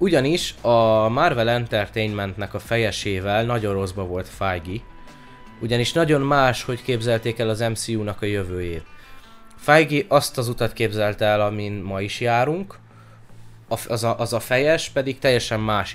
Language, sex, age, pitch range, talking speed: Hungarian, male, 20-39, 100-120 Hz, 145 wpm